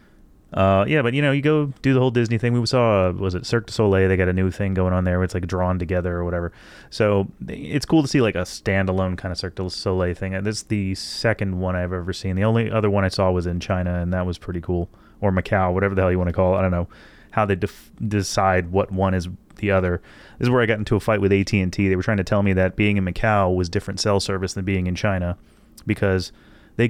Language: English